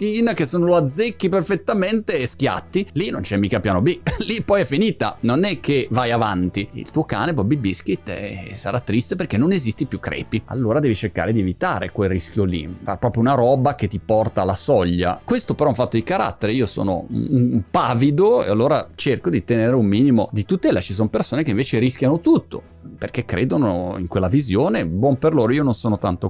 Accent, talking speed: native, 210 wpm